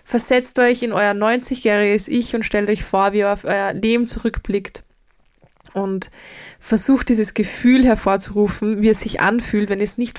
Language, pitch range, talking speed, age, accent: German, 205-240 Hz, 170 wpm, 20-39, German